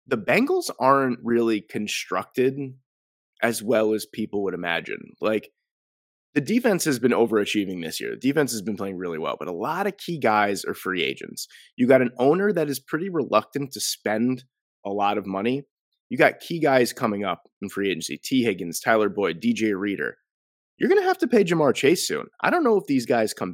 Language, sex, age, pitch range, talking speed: English, male, 20-39, 110-140 Hz, 205 wpm